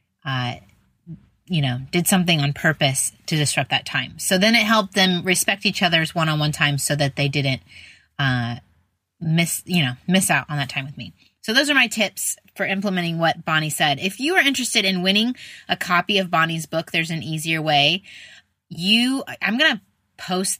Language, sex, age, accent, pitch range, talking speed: English, female, 20-39, American, 145-200 Hz, 190 wpm